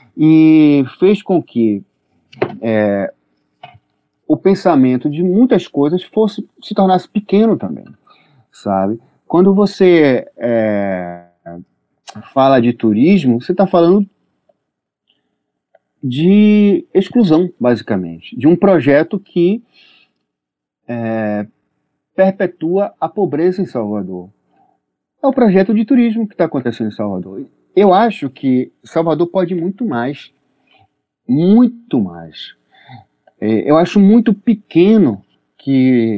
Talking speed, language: 95 wpm, Portuguese